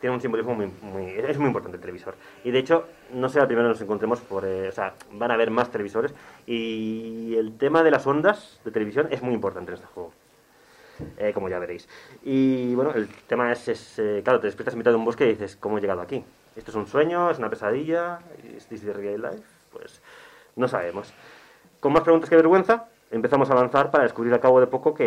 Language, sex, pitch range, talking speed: Spanish, male, 110-165 Hz, 235 wpm